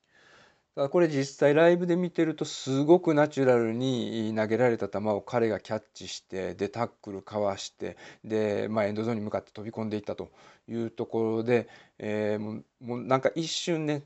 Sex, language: male, Japanese